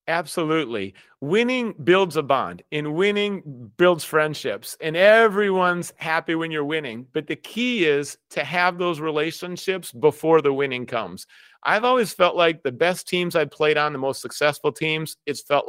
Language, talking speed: English, 165 wpm